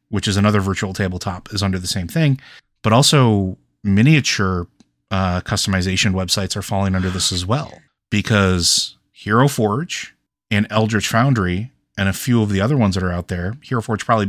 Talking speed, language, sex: 175 wpm, English, male